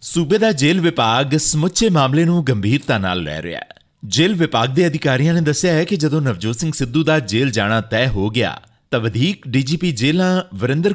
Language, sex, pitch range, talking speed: Punjabi, male, 110-155 Hz, 190 wpm